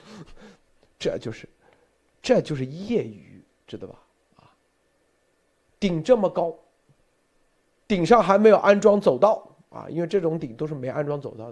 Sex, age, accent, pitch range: male, 50-69, native, 175-255 Hz